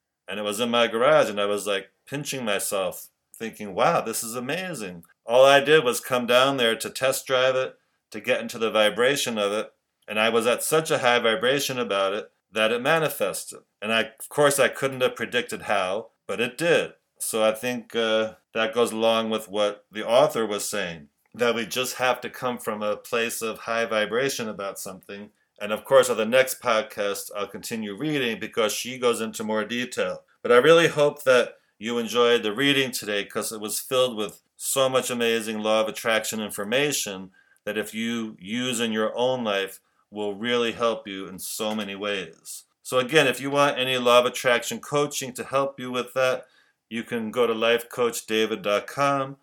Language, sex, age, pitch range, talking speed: English, male, 40-59, 110-130 Hz, 195 wpm